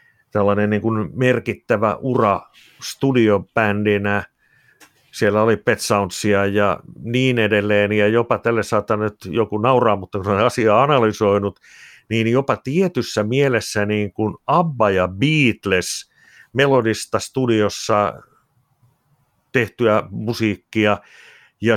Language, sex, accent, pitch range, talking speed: Finnish, male, native, 105-125 Hz, 100 wpm